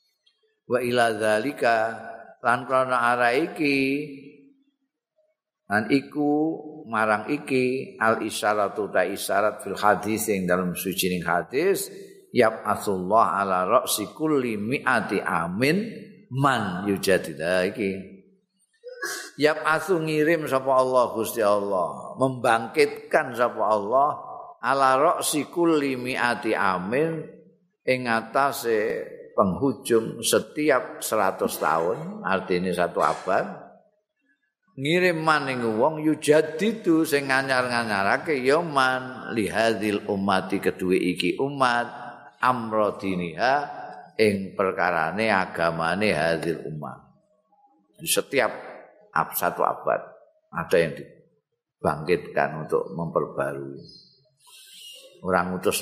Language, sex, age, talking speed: Indonesian, male, 50-69, 90 wpm